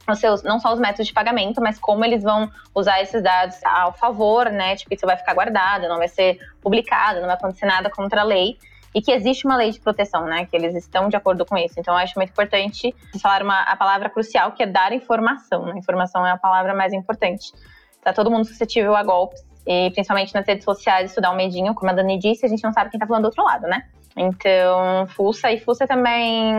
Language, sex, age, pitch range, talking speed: Portuguese, female, 20-39, 195-235 Hz, 235 wpm